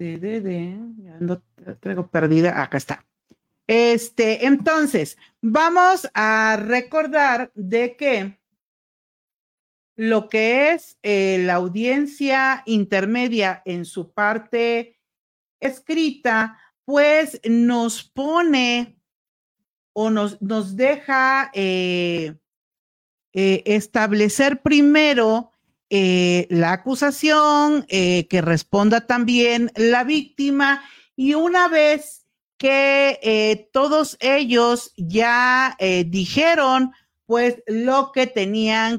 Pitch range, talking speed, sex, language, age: 195-270 Hz, 95 wpm, female, Spanish, 50-69